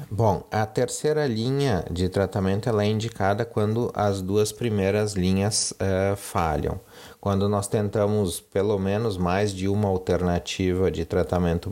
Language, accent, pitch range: Portuguese, Brazilian, 85-105 Hz